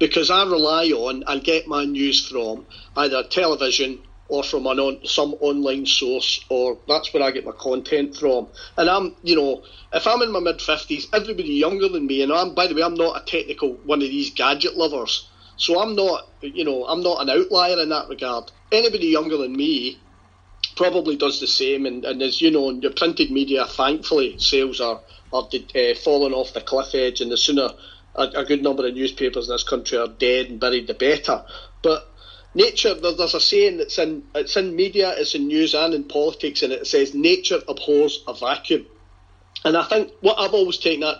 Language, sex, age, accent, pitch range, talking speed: English, male, 40-59, British, 135-195 Hz, 205 wpm